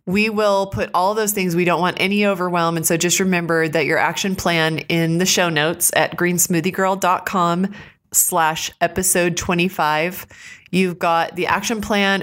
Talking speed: 160 wpm